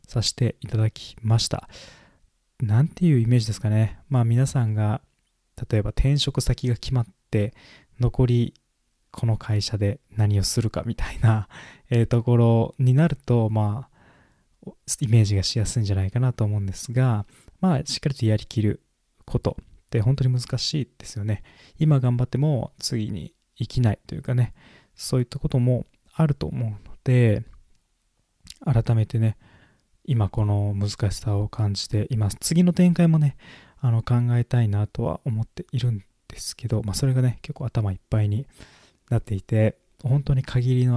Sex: male